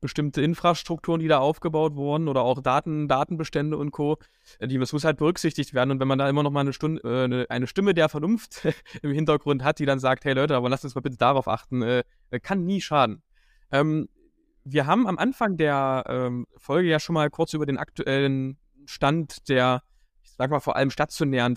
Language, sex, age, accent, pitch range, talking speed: German, male, 20-39, German, 130-160 Hz, 210 wpm